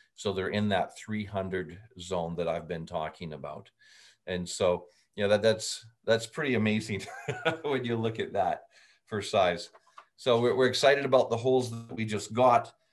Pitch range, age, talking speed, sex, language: 95-120 Hz, 40-59, 175 wpm, male, English